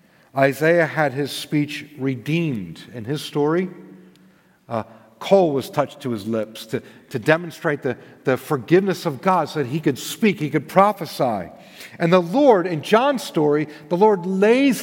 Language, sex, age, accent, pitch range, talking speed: English, male, 50-69, American, 155-215 Hz, 160 wpm